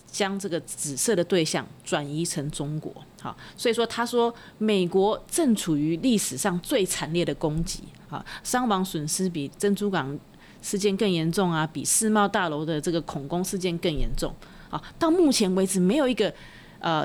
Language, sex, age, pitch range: Chinese, female, 30-49, 160-210 Hz